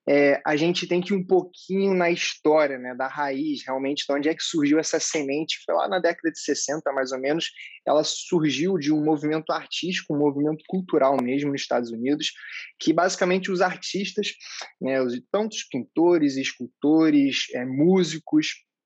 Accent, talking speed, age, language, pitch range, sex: Brazilian, 170 wpm, 20-39, Portuguese, 145-190 Hz, male